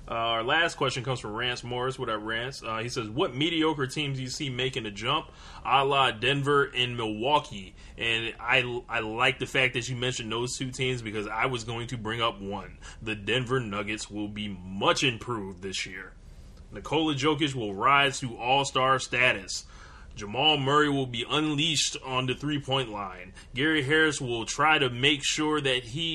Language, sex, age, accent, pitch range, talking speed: English, male, 20-39, American, 110-135 Hz, 190 wpm